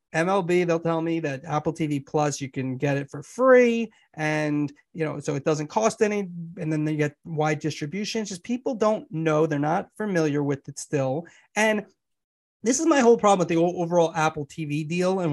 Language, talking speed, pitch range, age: English, 200 wpm, 155-205 Hz, 30-49